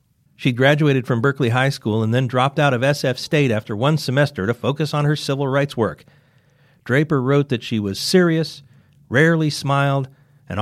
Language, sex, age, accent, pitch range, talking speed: English, male, 40-59, American, 125-160 Hz, 180 wpm